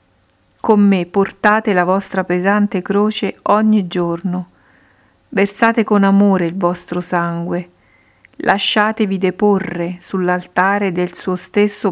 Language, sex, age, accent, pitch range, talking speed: Italian, female, 50-69, native, 170-200 Hz, 105 wpm